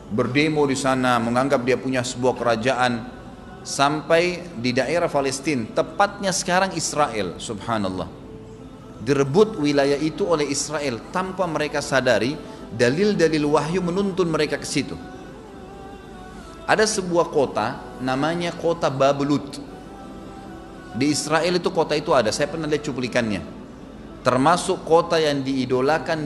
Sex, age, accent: male, 30-49, native